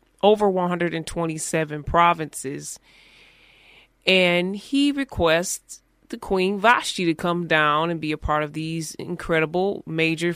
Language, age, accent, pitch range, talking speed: English, 20-39, American, 160-190 Hz, 115 wpm